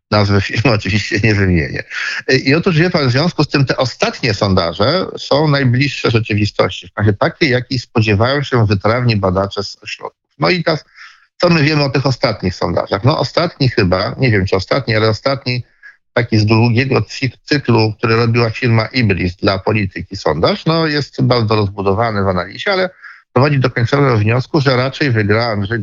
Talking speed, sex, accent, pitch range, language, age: 170 wpm, male, native, 105-135 Hz, Polish, 50-69